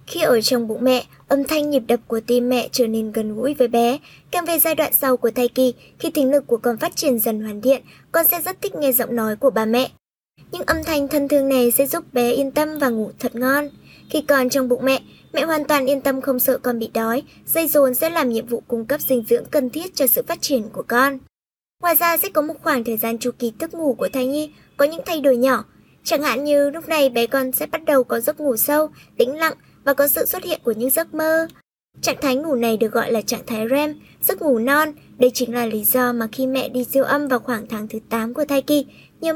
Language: Vietnamese